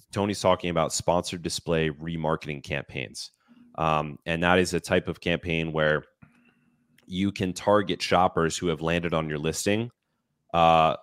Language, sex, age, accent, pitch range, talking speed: English, male, 20-39, American, 80-100 Hz, 145 wpm